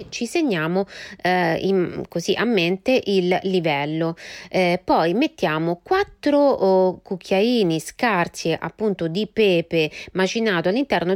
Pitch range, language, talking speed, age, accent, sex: 180-280 Hz, Italian, 115 wpm, 30-49, native, female